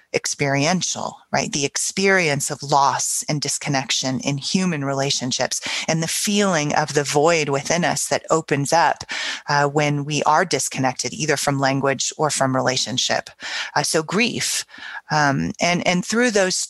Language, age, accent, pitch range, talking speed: English, 30-49, American, 140-175 Hz, 145 wpm